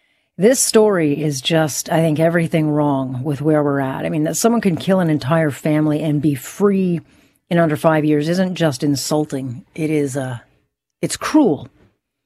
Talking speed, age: 175 wpm, 40-59